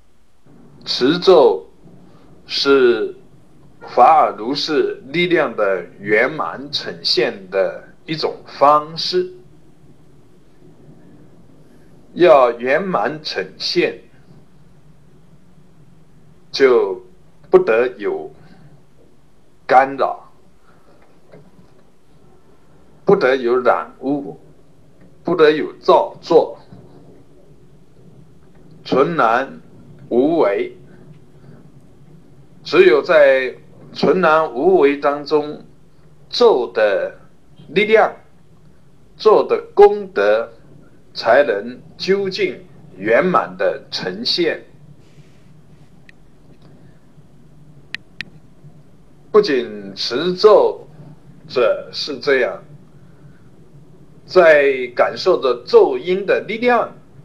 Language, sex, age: Chinese, male, 60-79